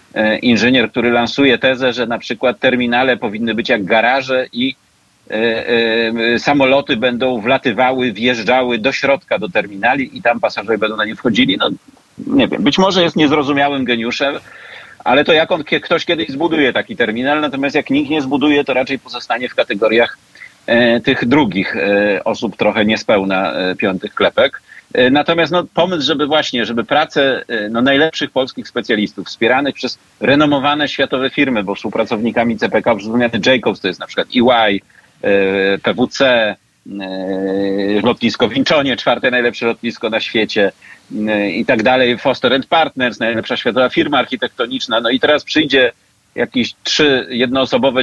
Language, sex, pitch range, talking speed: Polish, male, 115-150 Hz, 135 wpm